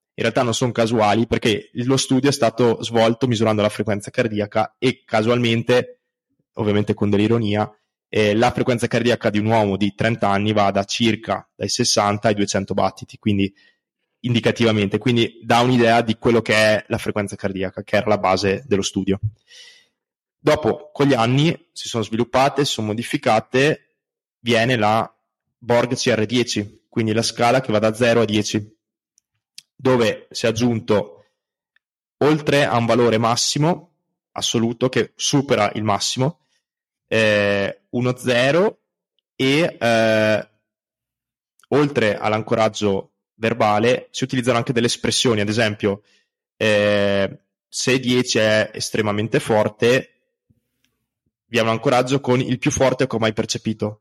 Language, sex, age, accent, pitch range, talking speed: Italian, male, 20-39, native, 105-125 Hz, 140 wpm